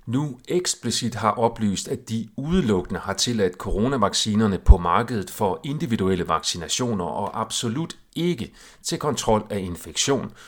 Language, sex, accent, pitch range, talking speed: Danish, male, native, 95-130 Hz, 125 wpm